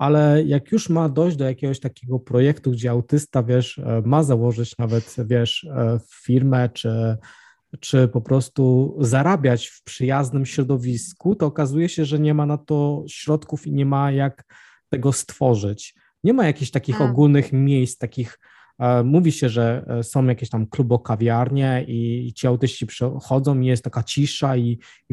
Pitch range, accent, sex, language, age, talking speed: 120-140 Hz, native, male, Polish, 20-39, 150 wpm